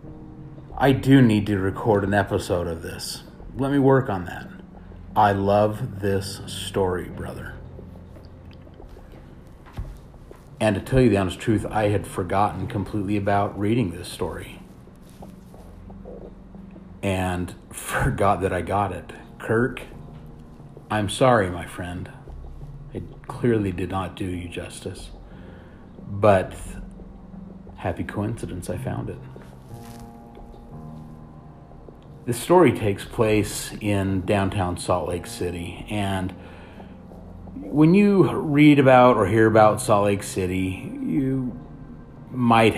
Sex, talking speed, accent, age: male, 115 wpm, American, 40-59